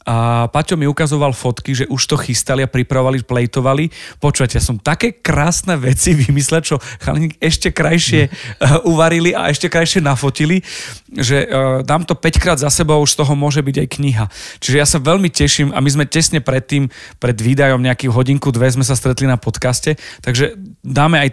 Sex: male